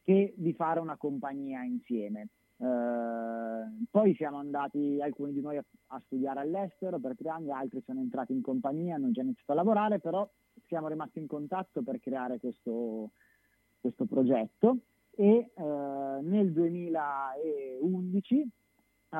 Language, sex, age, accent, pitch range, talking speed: Italian, male, 30-49, native, 125-195 Hz, 140 wpm